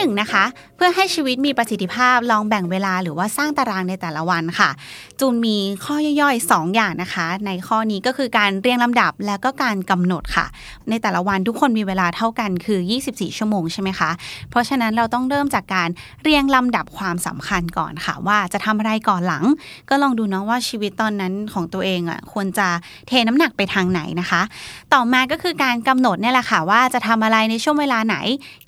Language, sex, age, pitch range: Thai, female, 20-39, 185-255 Hz